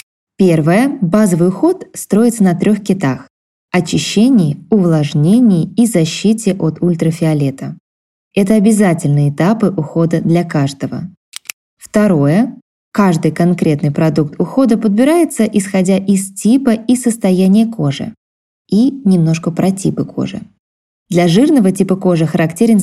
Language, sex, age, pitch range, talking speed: Russian, female, 20-39, 170-235 Hz, 110 wpm